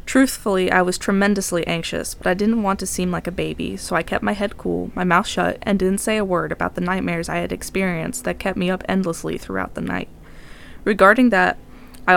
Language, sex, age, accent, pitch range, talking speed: English, female, 20-39, American, 175-200 Hz, 220 wpm